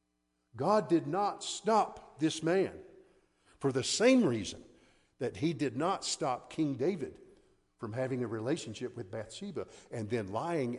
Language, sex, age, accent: English, male, 50-69, American